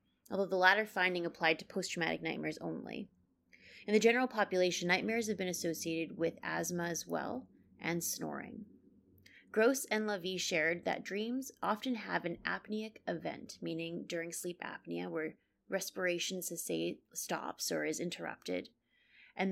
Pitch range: 165-195 Hz